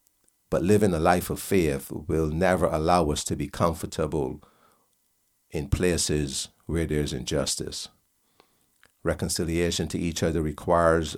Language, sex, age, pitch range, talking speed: English, male, 60-79, 75-95 Hz, 130 wpm